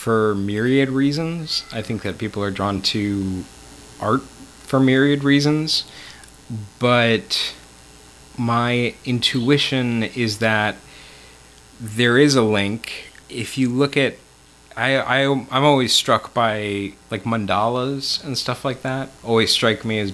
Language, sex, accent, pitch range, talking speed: English, male, American, 100-125 Hz, 130 wpm